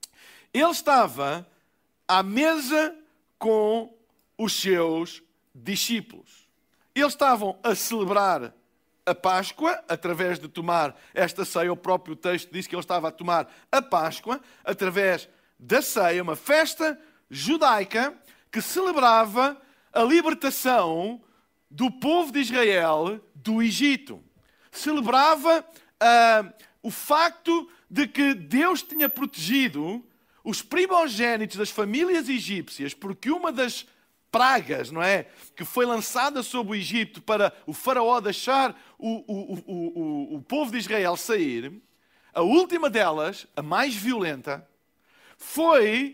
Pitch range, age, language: 190-275 Hz, 50-69, Portuguese